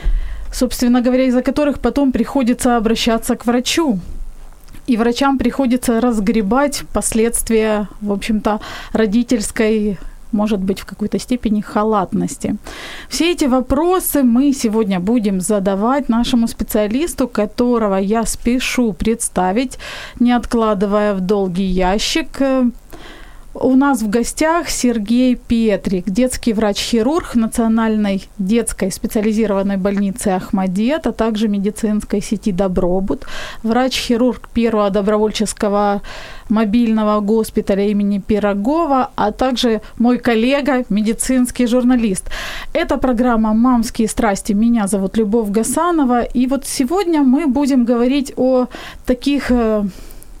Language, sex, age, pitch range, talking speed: Ukrainian, female, 30-49, 210-255 Hz, 105 wpm